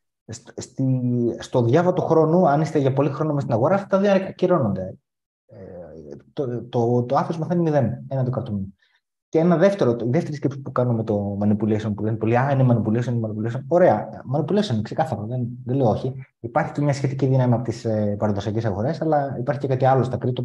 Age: 30-49